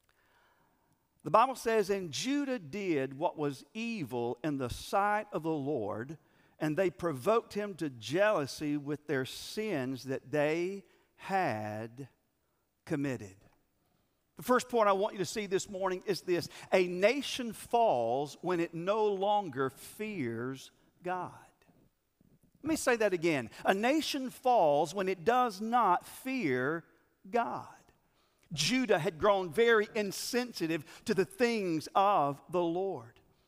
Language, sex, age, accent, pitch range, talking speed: English, male, 50-69, American, 170-230 Hz, 135 wpm